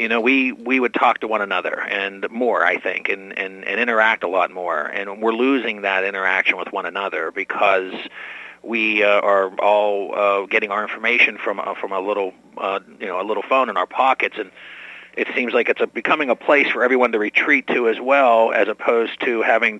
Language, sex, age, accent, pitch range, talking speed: English, male, 40-59, American, 110-140 Hz, 215 wpm